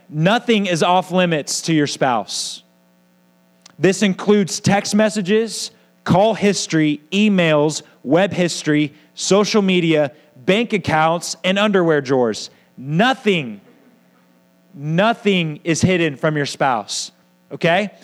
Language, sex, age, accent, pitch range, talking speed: English, male, 30-49, American, 160-200 Hz, 105 wpm